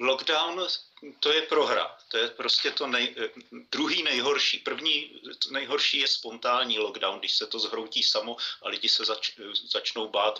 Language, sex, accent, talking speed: Czech, male, native, 155 wpm